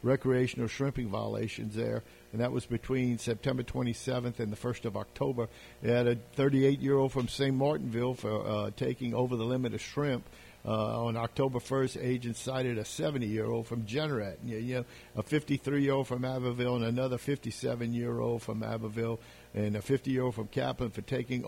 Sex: male